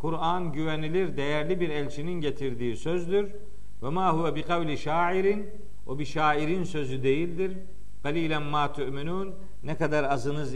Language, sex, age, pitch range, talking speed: Turkish, male, 50-69, 150-190 Hz, 130 wpm